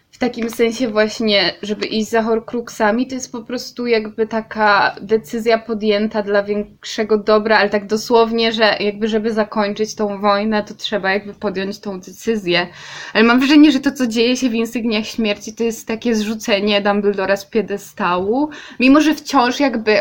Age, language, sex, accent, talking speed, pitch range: 20-39, Polish, female, native, 170 wpm, 205-240 Hz